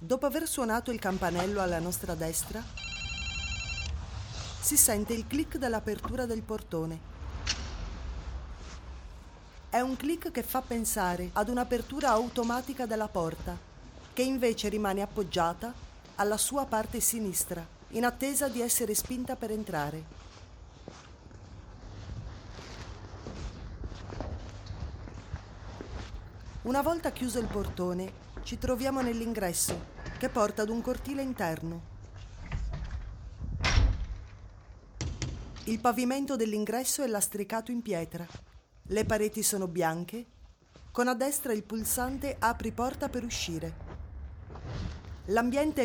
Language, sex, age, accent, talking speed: English, female, 30-49, Italian, 100 wpm